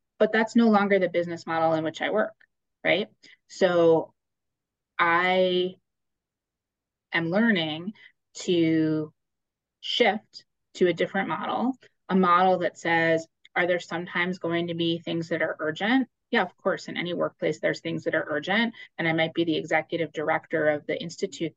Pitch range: 160-190 Hz